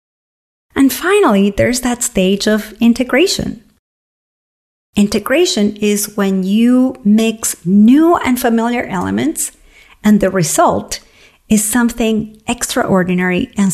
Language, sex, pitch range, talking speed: English, female, 180-240 Hz, 100 wpm